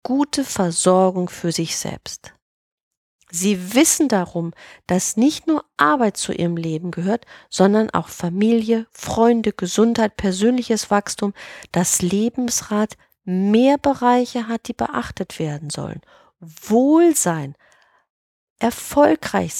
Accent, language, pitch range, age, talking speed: German, German, 180-245 Hz, 40-59, 105 wpm